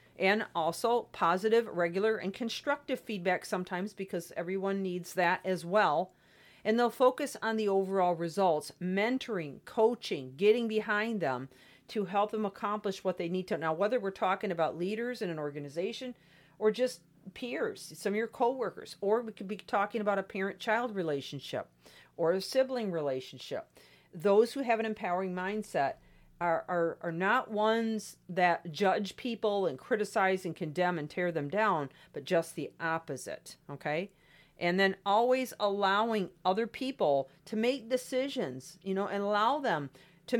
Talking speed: 155 wpm